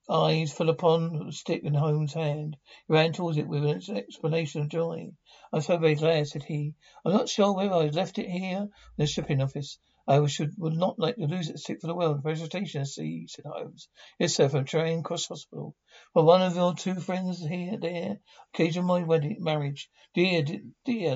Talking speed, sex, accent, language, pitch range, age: 205 wpm, male, British, English, 150-175 Hz, 60-79